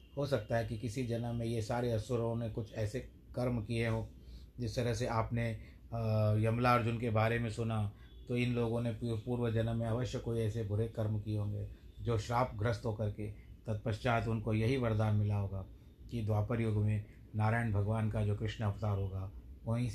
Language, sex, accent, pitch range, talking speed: Hindi, male, native, 100-125 Hz, 190 wpm